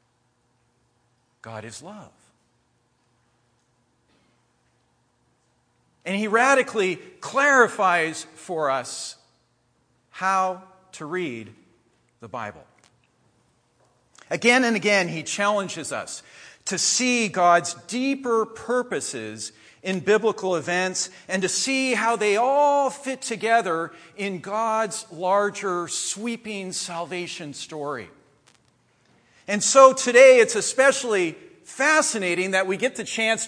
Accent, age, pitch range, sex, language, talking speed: American, 50-69, 160-230 Hz, male, English, 95 wpm